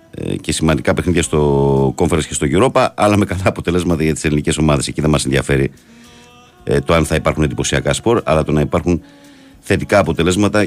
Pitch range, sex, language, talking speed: 75-95 Hz, male, Greek, 185 wpm